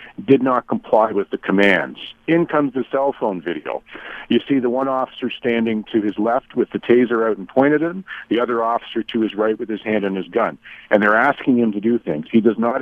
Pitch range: 110-135 Hz